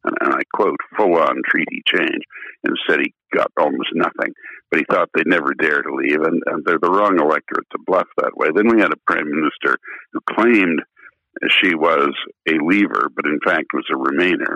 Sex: male